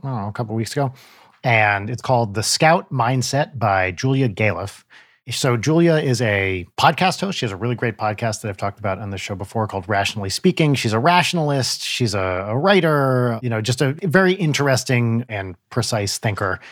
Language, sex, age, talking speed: English, male, 40-59, 200 wpm